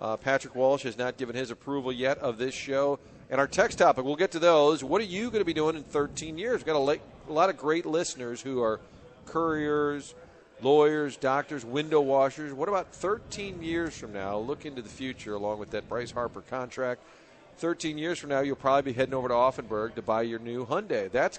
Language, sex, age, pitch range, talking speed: English, male, 40-59, 125-165 Hz, 220 wpm